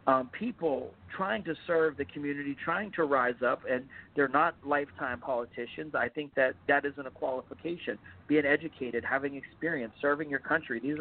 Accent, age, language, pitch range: American, 40-59, English, 130-160 Hz